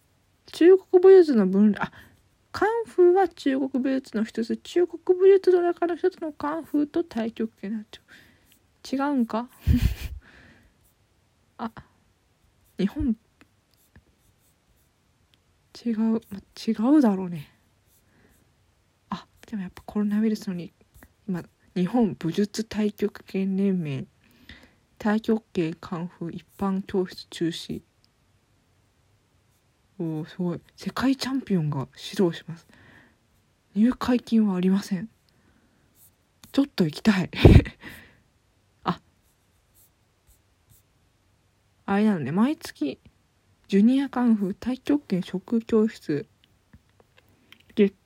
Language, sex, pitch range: Japanese, female, 160-245 Hz